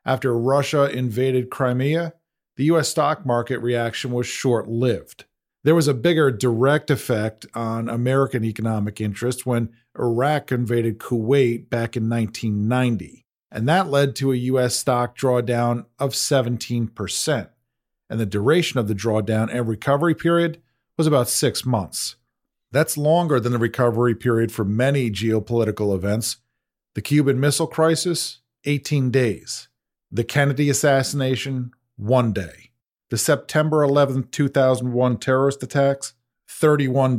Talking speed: 130 wpm